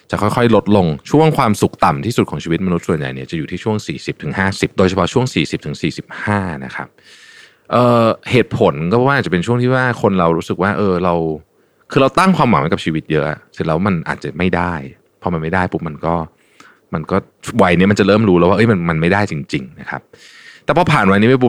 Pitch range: 80-105 Hz